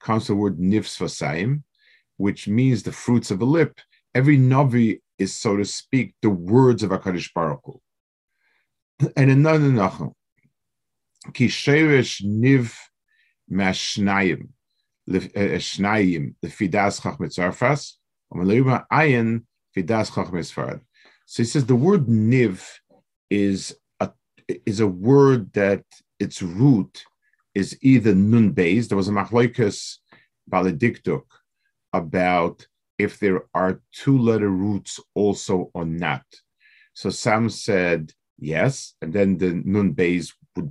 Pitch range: 95-125 Hz